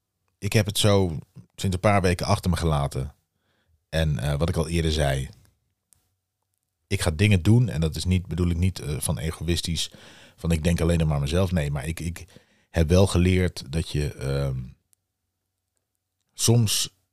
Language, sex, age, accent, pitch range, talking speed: Dutch, male, 40-59, Dutch, 80-95 Hz, 170 wpm